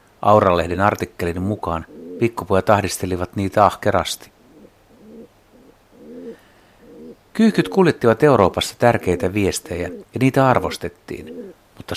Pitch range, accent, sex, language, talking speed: 90-125 Hz, native, male, Finnish, 80 wpm